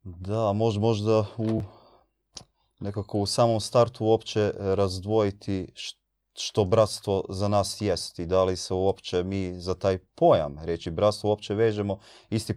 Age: 30-49